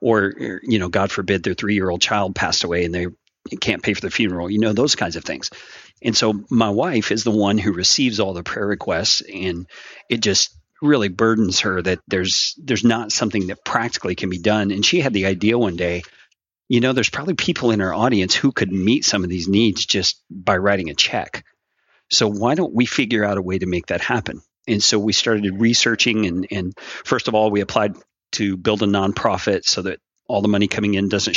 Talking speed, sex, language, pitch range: 220 wpm, male, English, 95-110 Hz